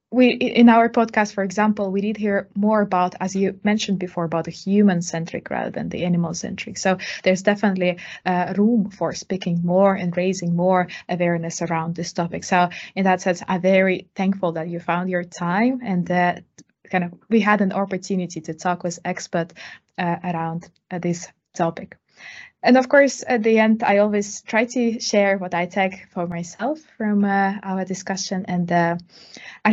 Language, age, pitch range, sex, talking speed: English, 20-39, 175-210 Hz, female, 185 wpm